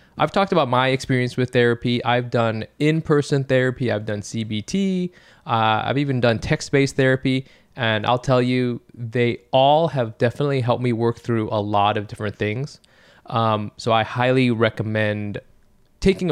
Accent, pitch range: American, 115-140 Hz